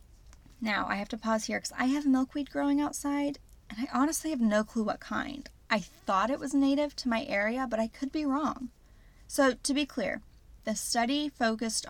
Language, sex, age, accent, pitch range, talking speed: English, female, 10-29, American, 210-275 Hz, 200 wpm